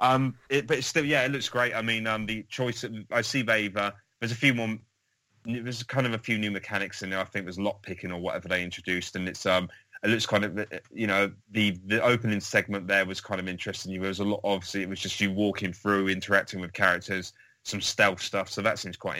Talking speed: 245 wpm